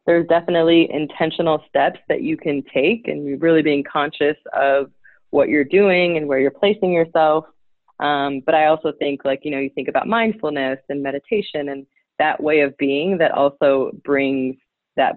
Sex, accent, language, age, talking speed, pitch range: female, American, English, 20-39, 175 wpm, 140-175 Hz